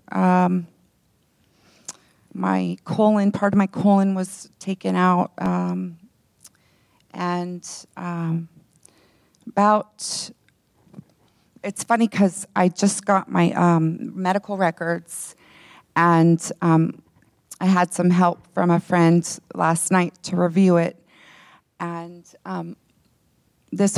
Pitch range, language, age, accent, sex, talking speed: 165-195 Hz, English, 30-49, American, female, 105 wpm